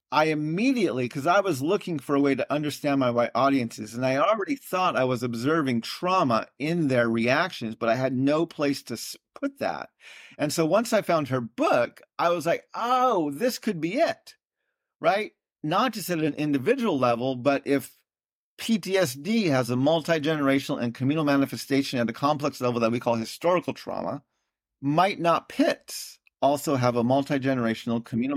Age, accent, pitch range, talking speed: 40-59, American, 125-165 Hz, 170 wpm